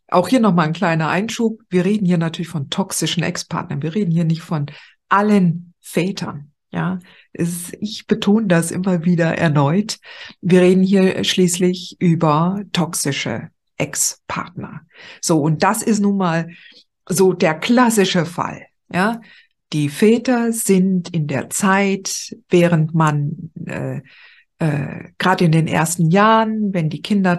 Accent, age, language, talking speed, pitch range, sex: German, 50-69, German, 140 wpm, 160-200 Hz, female